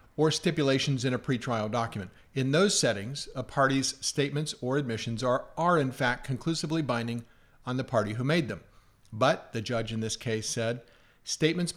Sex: male